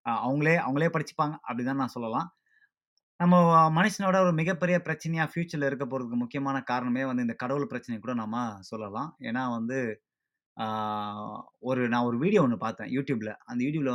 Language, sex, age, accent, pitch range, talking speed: Tamil, male, 20-39, native, 120-150 Hz, 150 wpm